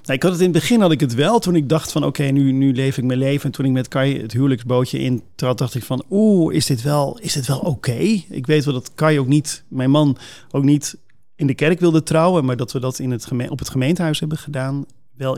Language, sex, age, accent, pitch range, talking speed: Dutch, male, 40-59, Dutch, 130-160 Hz, 285 wpm